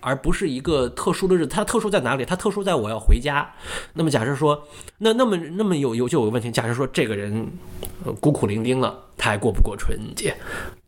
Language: Chinese